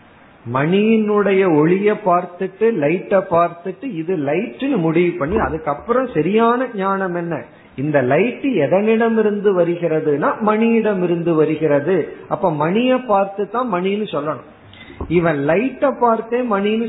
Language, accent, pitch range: Tamil, native, 150-205 Hz